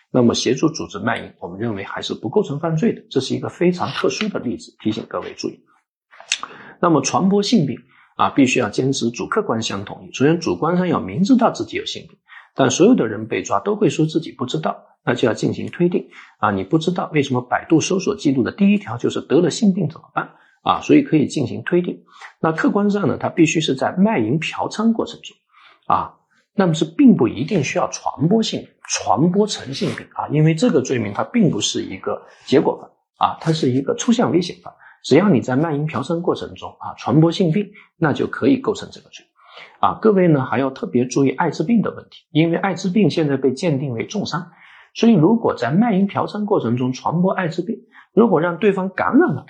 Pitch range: 150-205 Hz